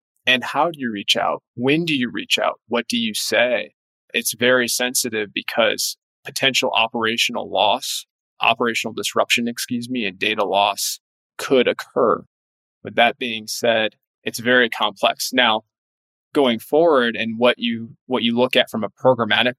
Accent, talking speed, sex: American, 155 wpm, male